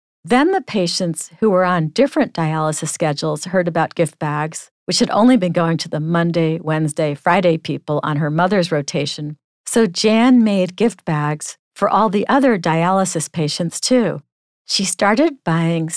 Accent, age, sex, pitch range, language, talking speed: American, 50-69, female, 160-195 Hz, English, 160 wpm